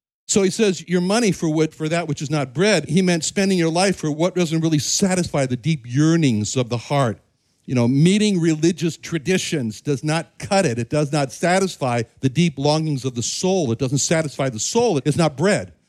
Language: English